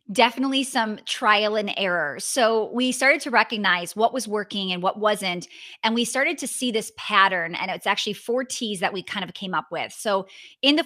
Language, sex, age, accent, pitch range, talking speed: English, female, 20-39, American, 190-235 Hz, 210 wpm